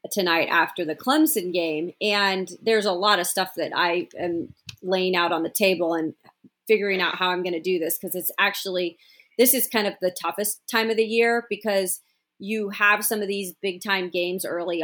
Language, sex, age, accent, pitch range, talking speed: English, female, 30-49, American, 175-210 Hz, 205 wpm